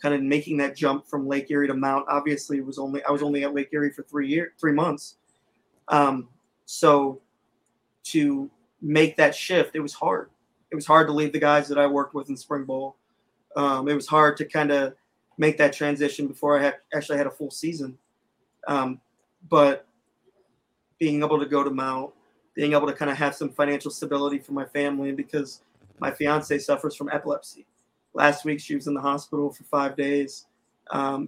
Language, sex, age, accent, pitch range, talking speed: English, male, 30-49, American, 140-150 Hz, 195 wpm